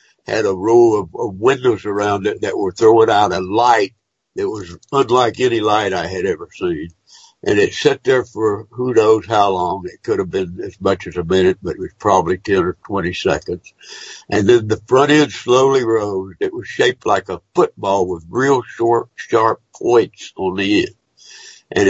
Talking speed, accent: 195 wpm, American